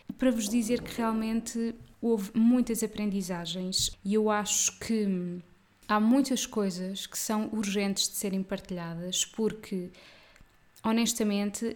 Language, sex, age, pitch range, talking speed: Portuguese, female, 20-39, 185-215 Hz, 115 wpm